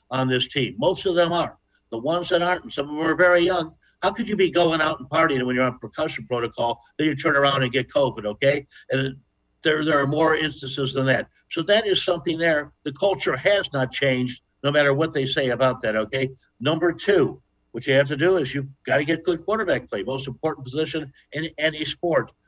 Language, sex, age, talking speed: English, male, 60-79, 225 wpm